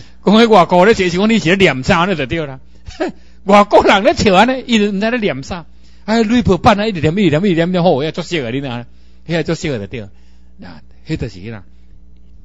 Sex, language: male, Chinese